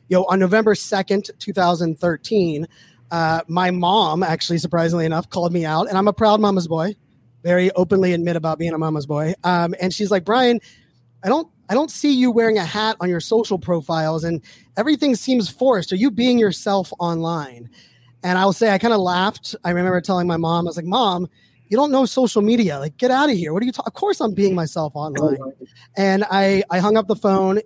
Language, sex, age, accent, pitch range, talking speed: English, male, 20-39, American, 165-205 Hz, 215 wpm